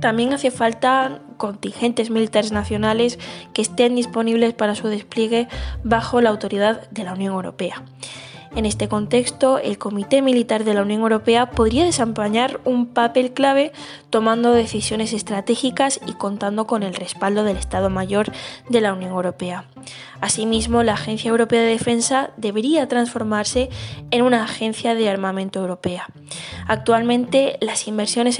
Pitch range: 200-240 Hz